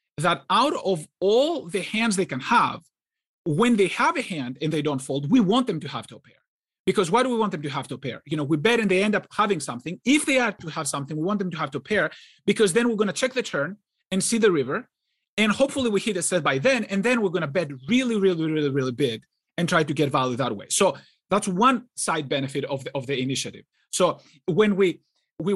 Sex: male